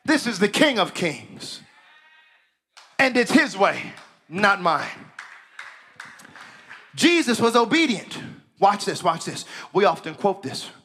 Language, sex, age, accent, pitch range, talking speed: English, male, 40-59, American, 150-225 Hz, 125 wpm